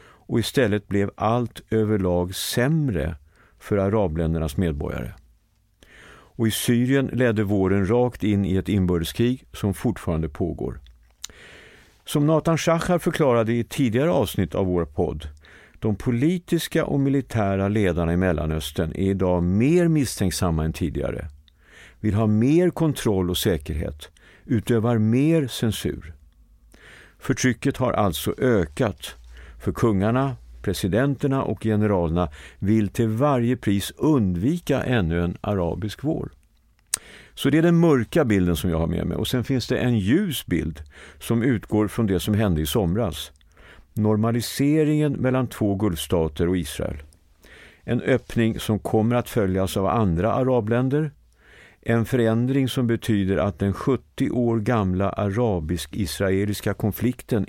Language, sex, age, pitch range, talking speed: Swedish, male, 50-69, 90-125 Hz, 130 wpm